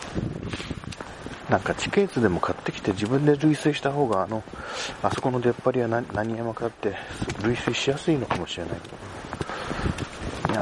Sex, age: male, 40-59